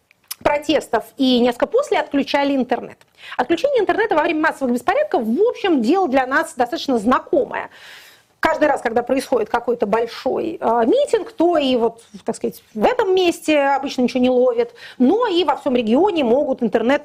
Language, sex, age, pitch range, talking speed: Russian, female, 30-49, 250-345 Hz, 160 wpm